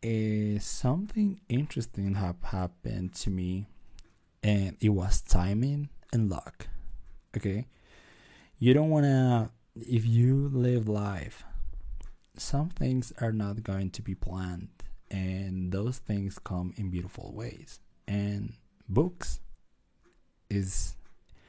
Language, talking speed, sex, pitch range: Spanish, 110 wpm, male, 90-110 Hz